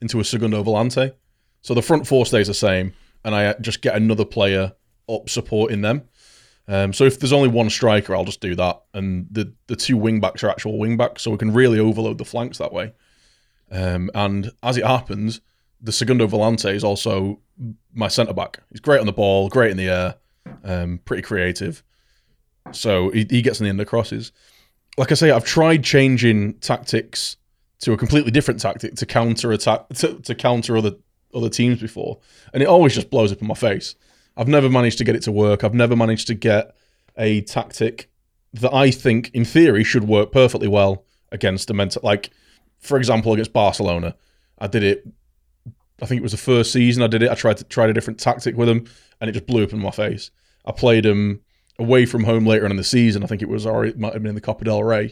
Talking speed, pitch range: 215 wpm, 105-120 Hz